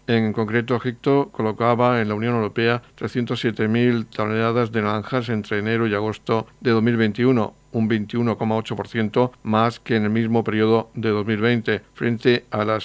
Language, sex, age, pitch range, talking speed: Spanish, male, 60-79, 110-120 Hz, 145 wpm